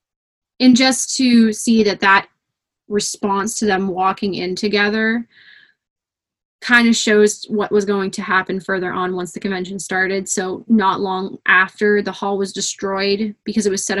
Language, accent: English, American